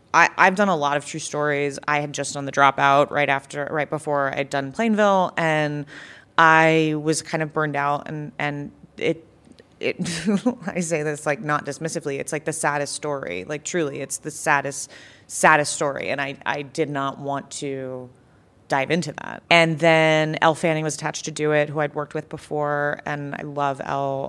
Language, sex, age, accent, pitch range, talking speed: English, female, 30-49, American, 140-155 Hz, 195 wpm